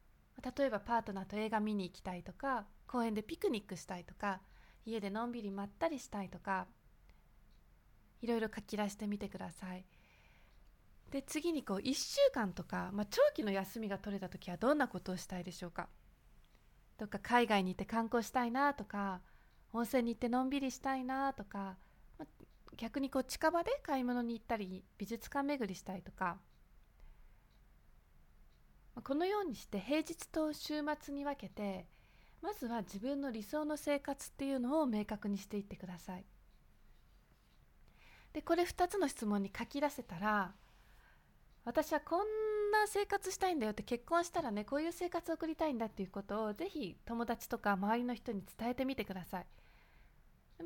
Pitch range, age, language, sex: 195-280 Hz, 20-39, Japanese, female